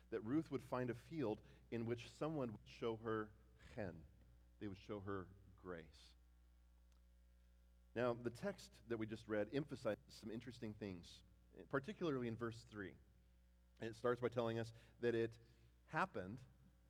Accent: American